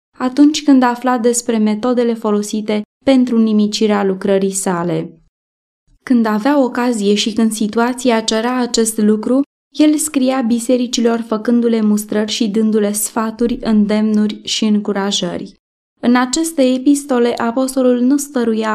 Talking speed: 115 wpm